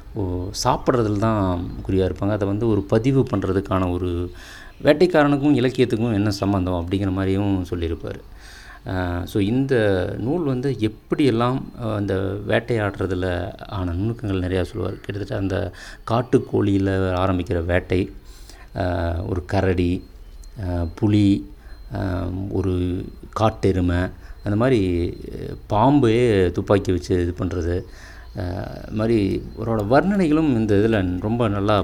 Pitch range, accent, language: 90-115 Hz, native, Tamil